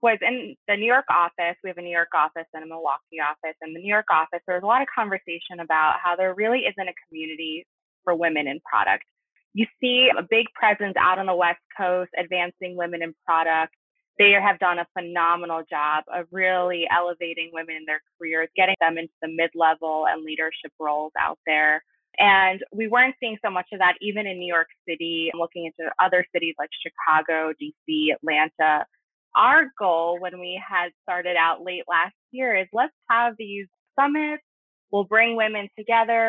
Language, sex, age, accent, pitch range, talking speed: English, female, 20-39, American, 165-200 Hz, 190 wpm